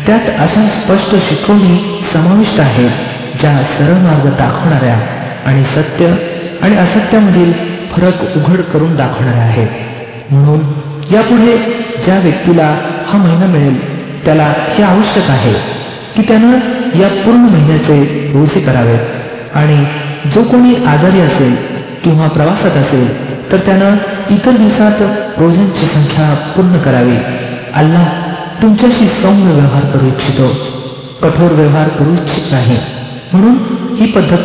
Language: Marathi